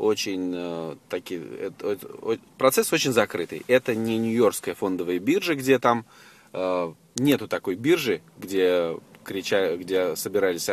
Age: 20-39